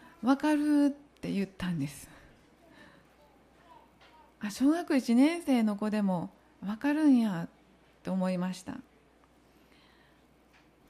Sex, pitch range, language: female, 200-280 Hz, Japanese